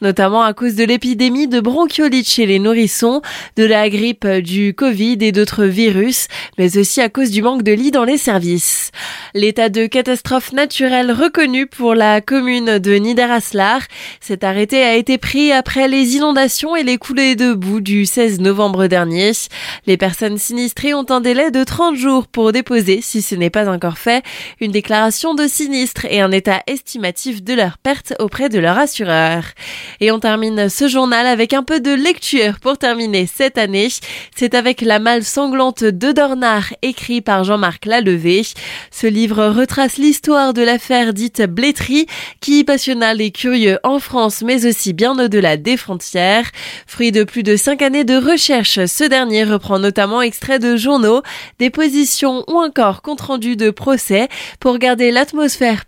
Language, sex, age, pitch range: French, female, 20-39, 210-265 Hz